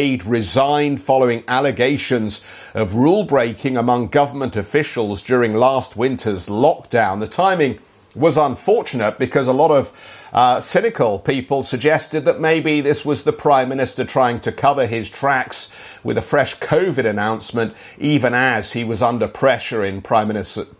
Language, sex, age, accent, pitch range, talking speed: English, male, 50-69, British, 110-140 Hz, 145 wpm